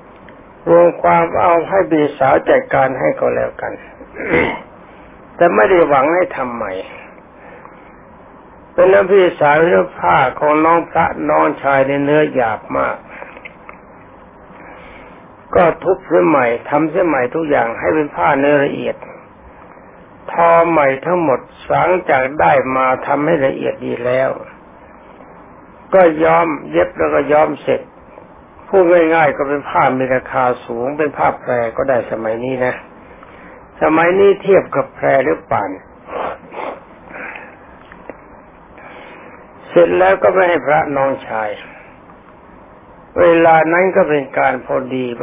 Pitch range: 135-170 Hz